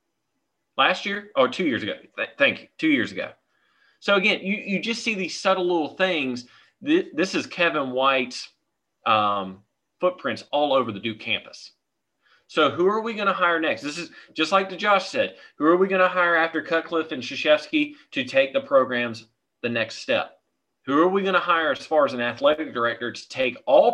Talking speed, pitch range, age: 200 wpm, 135-200 Hz, 30-49